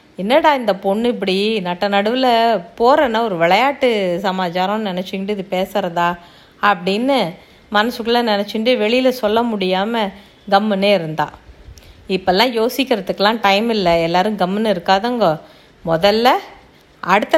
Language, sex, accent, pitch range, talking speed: Tamil, female, native, 185-245 Hz, 105 wpm